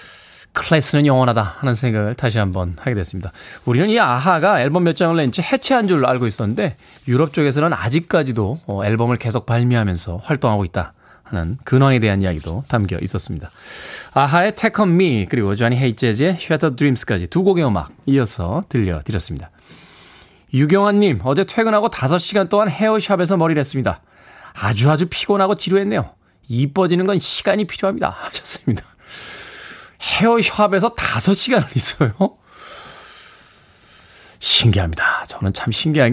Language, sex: Korean, male